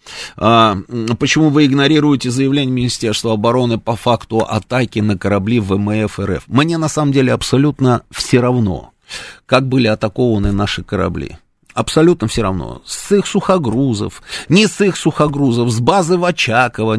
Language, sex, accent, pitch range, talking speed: Russian, male, native, 115-165 Hz, 140 wpm